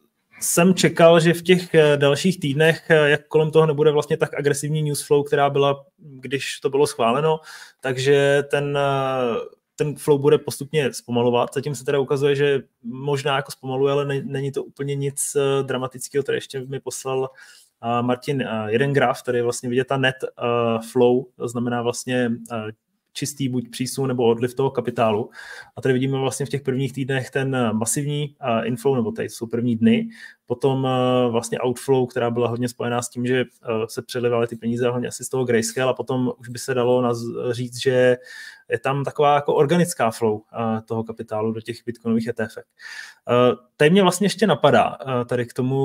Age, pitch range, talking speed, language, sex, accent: 20-39, 120-145 Hz, 170 wpm, Czech, male, native